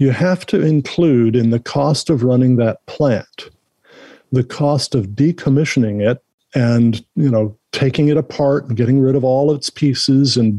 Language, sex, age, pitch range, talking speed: English, male, 50-69, 120-140 Hz, 170 wpm